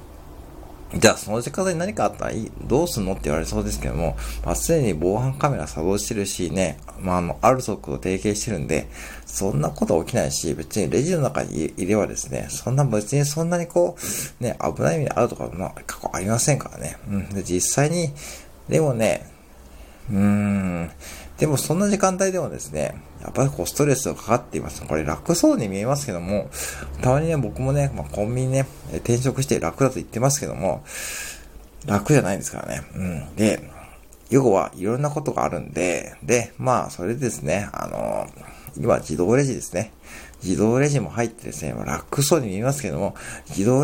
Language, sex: Japanese, male